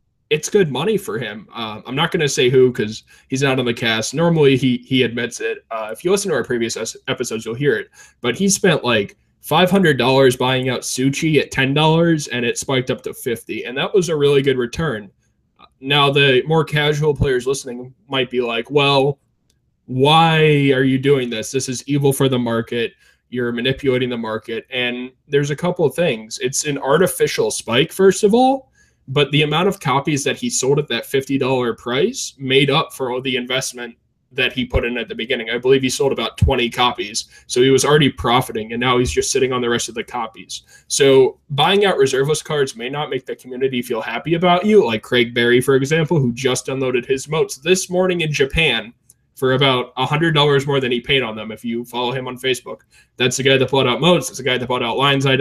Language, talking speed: English, 220 wpm